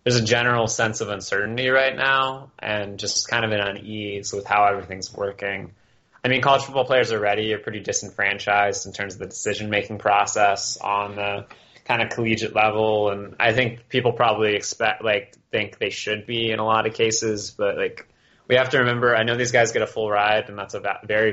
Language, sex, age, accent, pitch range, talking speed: English, male, 20-39, American, 105-120 Hz, 215 wpm